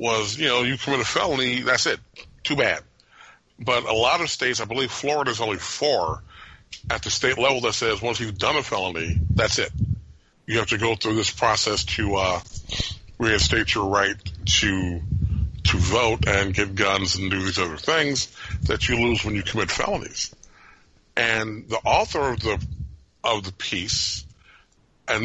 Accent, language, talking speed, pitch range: American, English, 175 wpm, 95-130 Hz